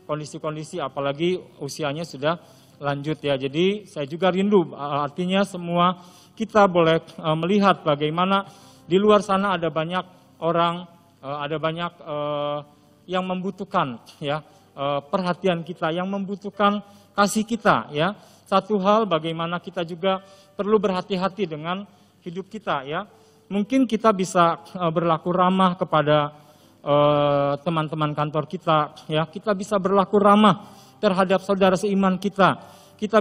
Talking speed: 115 wpm